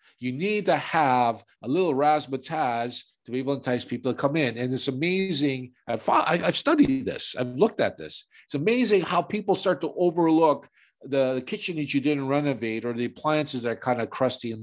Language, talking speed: English, 200 wpm